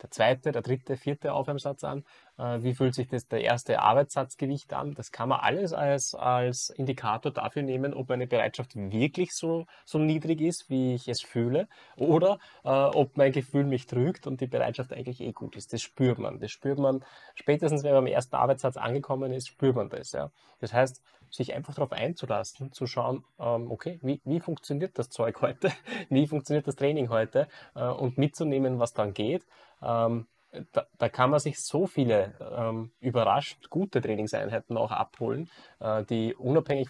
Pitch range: 120-145 Hz